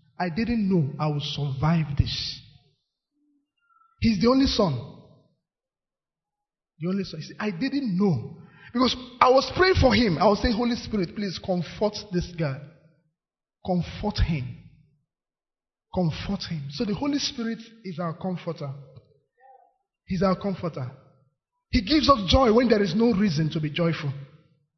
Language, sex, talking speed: English, male, 145 wpm